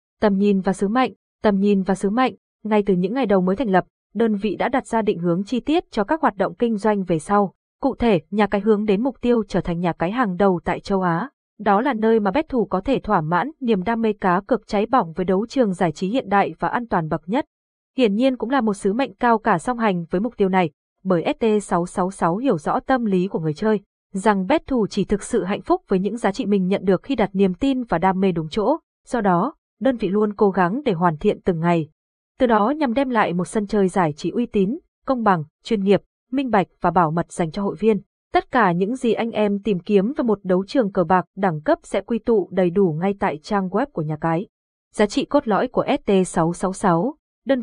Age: 20-39